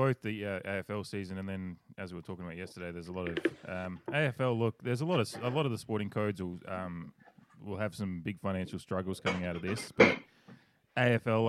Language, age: English, 20-39